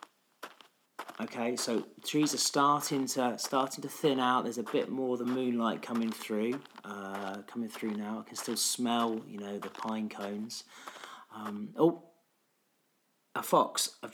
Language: English